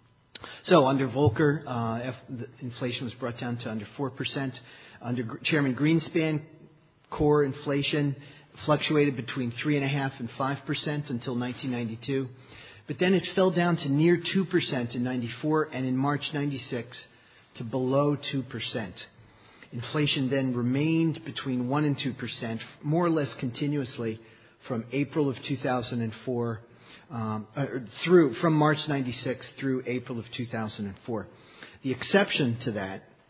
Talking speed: 130 wpm